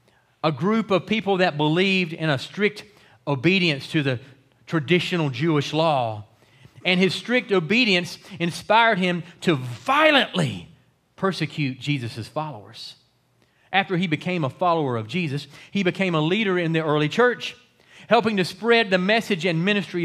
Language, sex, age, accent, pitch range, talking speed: English, male, 40-59, American, 145-195 Hz, 145 wpm